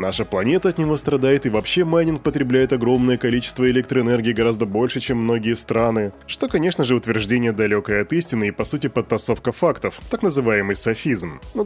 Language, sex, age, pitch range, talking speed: Russian, male, 10-29, 110-145 Hz, 170 wpm